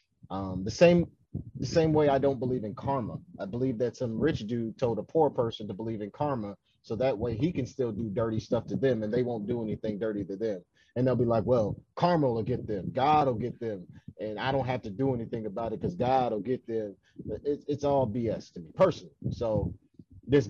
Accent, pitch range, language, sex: American, 115-150 Hz, English, male